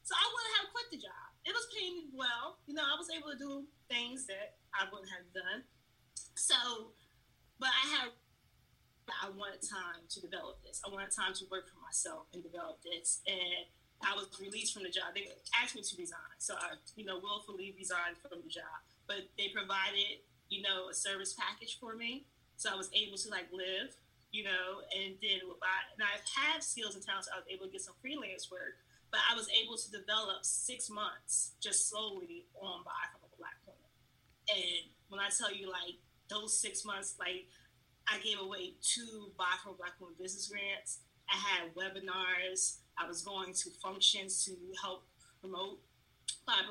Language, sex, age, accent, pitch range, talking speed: English, female, 20-39, American, 185-230 Hz, 195 wpm